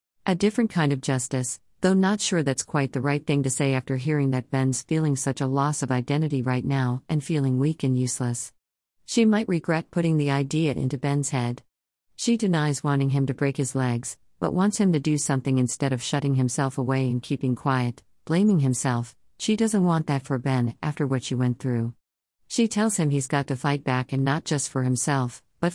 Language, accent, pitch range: English, American, 130-155 Hz